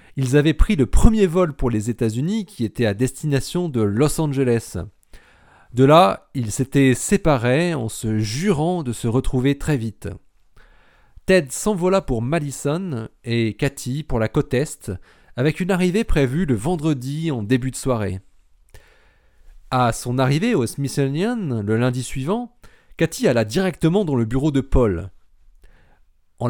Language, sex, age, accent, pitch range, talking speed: French, male, 40-59, French, 110-165 Hz, 150 wpm